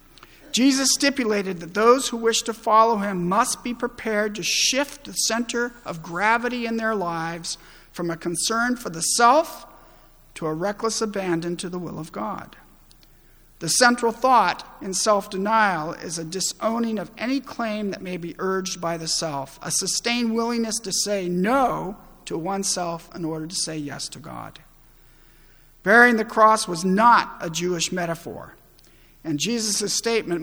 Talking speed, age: 160 wpm, 50-69